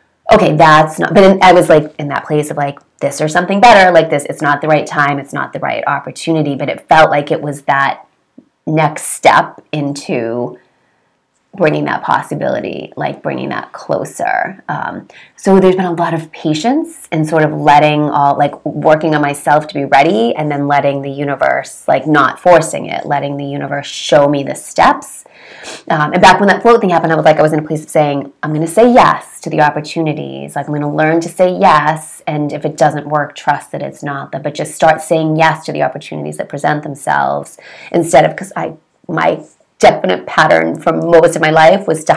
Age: 30-49